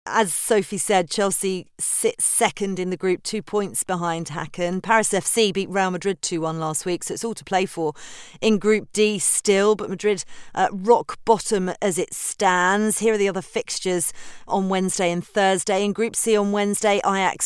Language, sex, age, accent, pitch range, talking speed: English, female, 40-59, British, 175-215 Hz, 185 wpm